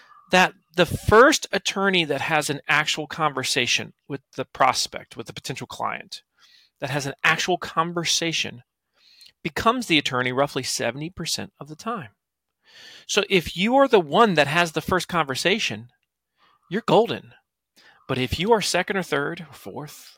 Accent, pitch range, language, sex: American, 135-180 Hz, English, male